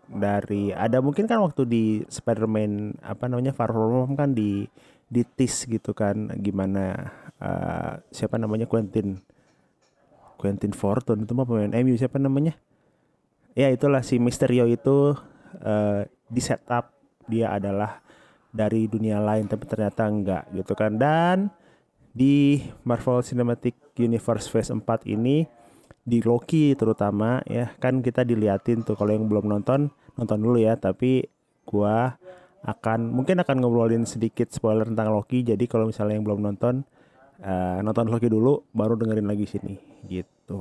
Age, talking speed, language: 30-49, 140 wpm, Indonesian